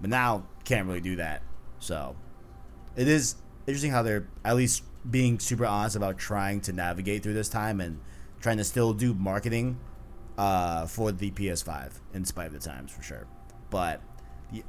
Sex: male